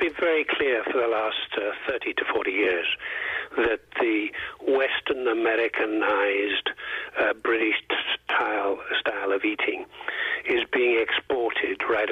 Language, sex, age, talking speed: English, male, 50-69, 125 wpm